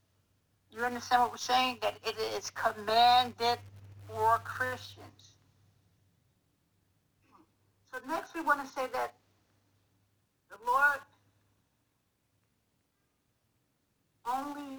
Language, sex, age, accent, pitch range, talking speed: English, female, 60-79, American, 215-295 Hz, 85 wpm